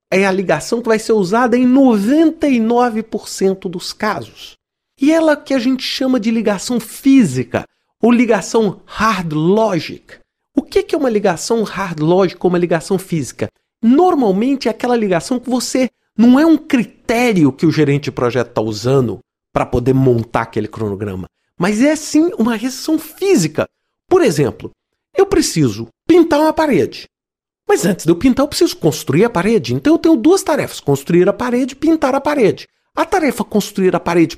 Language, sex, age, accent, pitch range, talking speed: Portuguese, male, 40-59, Brazilian, 180-280 Hz, 170 wpm